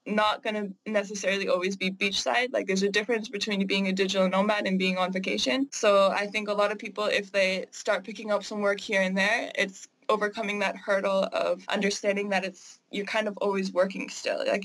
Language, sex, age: English, female, 20-39